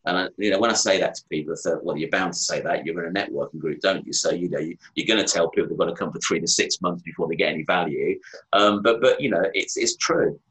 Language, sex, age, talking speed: English, male, 30-49, 320 wpm